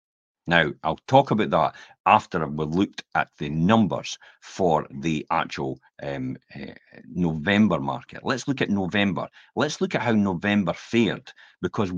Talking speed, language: 140 wpm, English